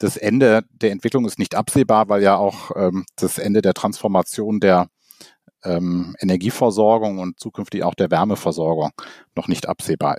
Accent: German